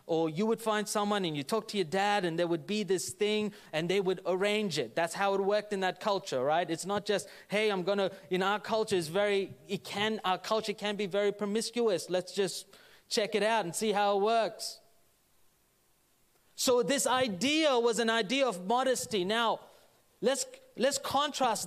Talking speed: 200 wpm